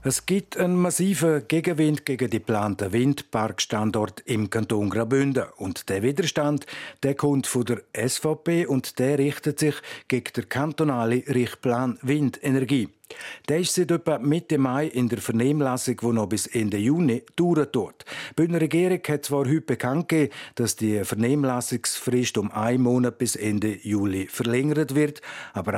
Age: 50-69